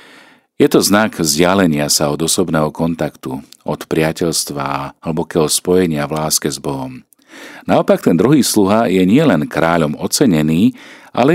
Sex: male